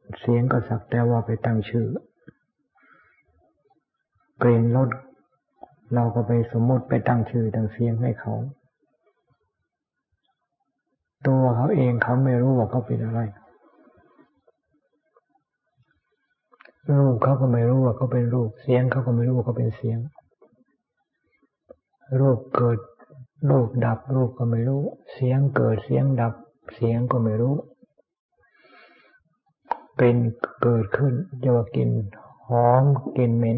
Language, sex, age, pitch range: Thai, male, 60-79, 120-135 Hz